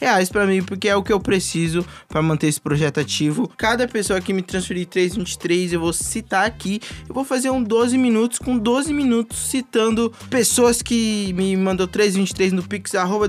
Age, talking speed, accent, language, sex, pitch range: 20-39, 195 wpm, Brazilian, Portuguese, male, 180-240 Hz